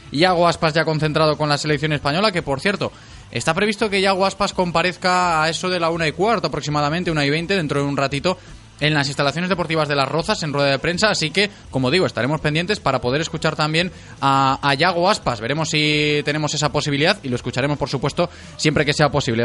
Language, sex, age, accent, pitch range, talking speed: Spanish, male, 20-39, Spanish, 135-170 Hz, 220 wpm